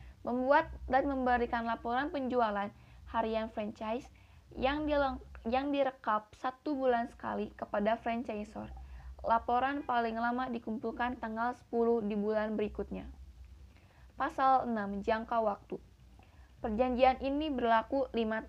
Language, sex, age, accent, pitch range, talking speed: Indonesian, female, 20-39, native, 210-255 Hz, 105 wpm